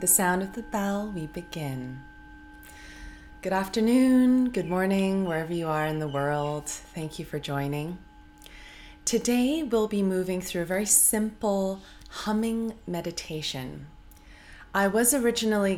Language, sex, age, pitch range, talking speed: English, female, 20-39, 150-195 Hz, 130 wpm